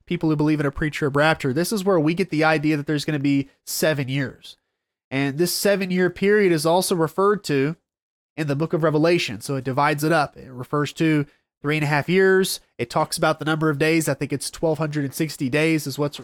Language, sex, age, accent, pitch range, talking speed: English, male, 30-49, American, 145-180 Hz, 225 wpm